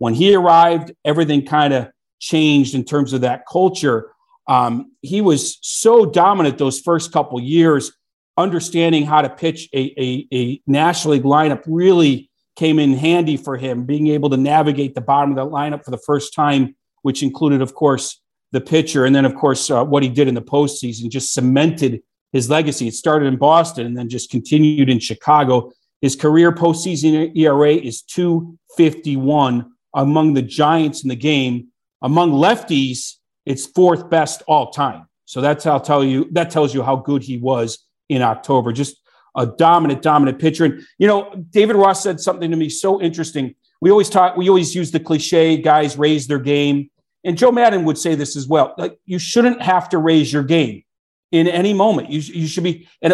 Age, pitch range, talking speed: 40-59, 135-170 Hz, 185 wpm